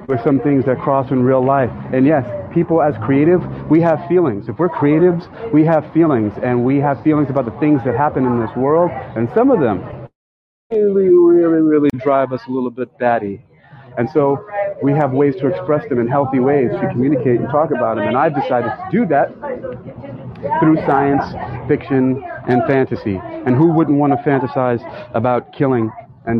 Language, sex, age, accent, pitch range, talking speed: English, male, 40-59, American, 120-145 Hz, 190 wpm